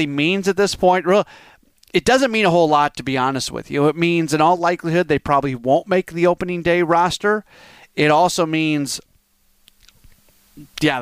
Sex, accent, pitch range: male, American, 135-165 Hz